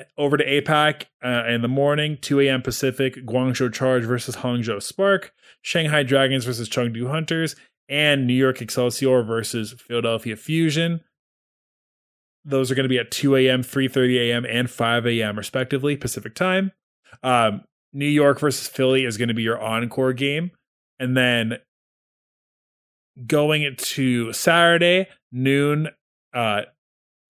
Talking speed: 135 wpm